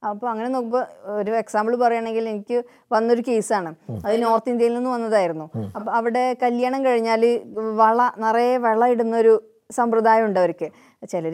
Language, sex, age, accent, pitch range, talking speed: Malayalam, female, 20-39, native, 215-260 Hz, 140 wpm